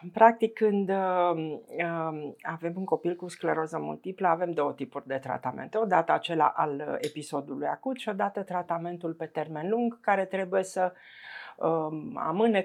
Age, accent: 50-69, native